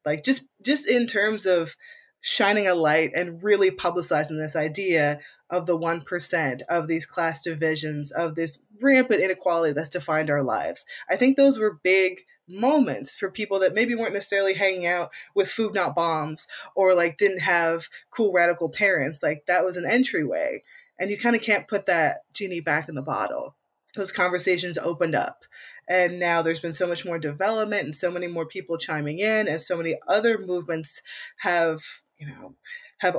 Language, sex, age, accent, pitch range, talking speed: English, female, 20-39, American, 165-200 Hz, 180 wpm